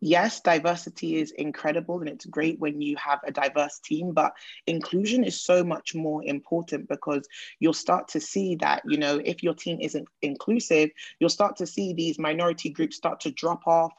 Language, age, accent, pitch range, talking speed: English, 20-39, British, 155-185 Hz, 190 wpm